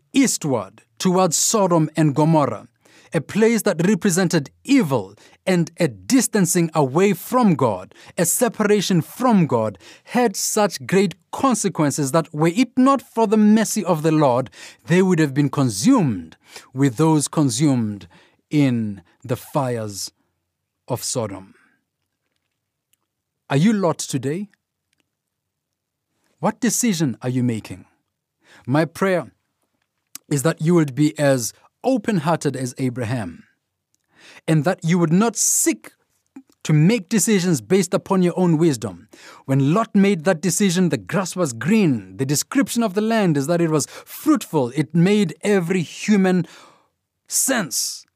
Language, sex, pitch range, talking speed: English, male, 135-195 Hz, 130 wpm